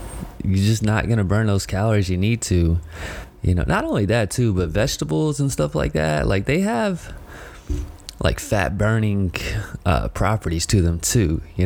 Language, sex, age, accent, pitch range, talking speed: English, male, 20-39, American, 90-110 Hz, 180 wpm